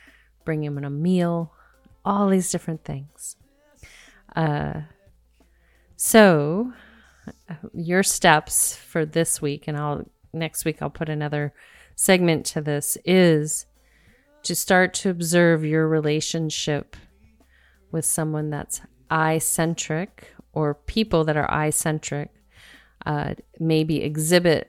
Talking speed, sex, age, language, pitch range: 115 wpm, female, 30-49, English, 150-175 Hz